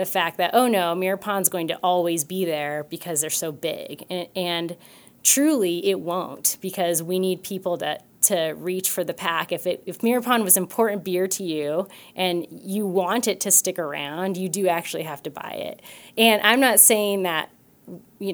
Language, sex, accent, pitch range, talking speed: English, female, American, 165-190 Hz, 200 wpm